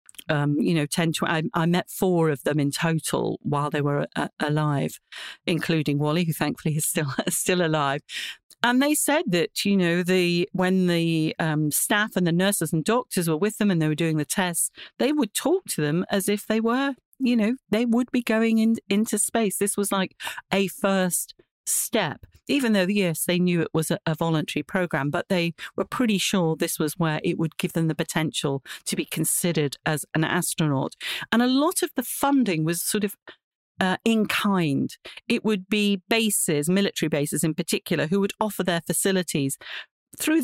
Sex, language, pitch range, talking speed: female, English, 155-200 Hz, 195 wpm